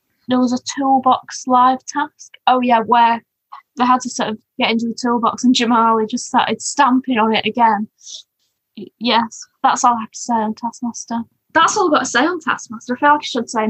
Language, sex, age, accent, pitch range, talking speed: English, female, 10-29, British, 225-265 Hz, 215 wpm